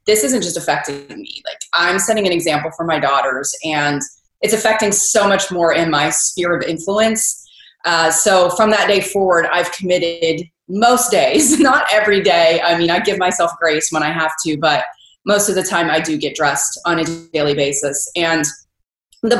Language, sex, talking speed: English, female, 190 wpm